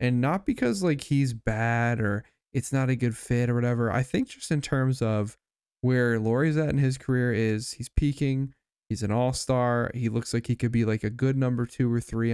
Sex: male